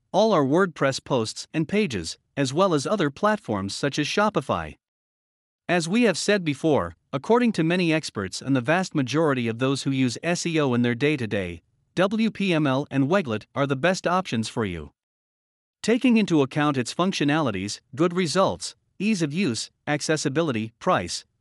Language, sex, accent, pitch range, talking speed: English, male, American, 125-175 Hz, 155 wpm